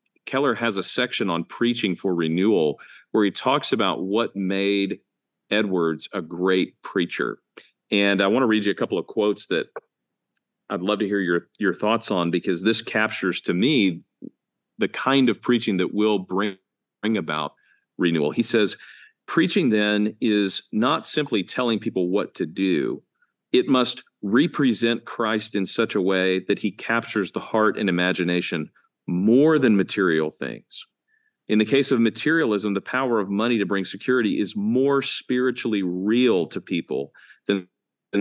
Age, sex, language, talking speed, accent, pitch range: 40-59, male, English, 165 wpm, American, 95-115 Hz